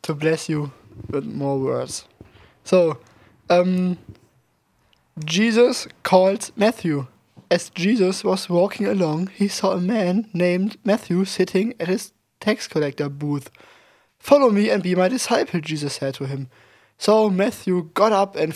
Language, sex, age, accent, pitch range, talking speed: English, male, 20-39, German, 155-195 Hz, 140 wpm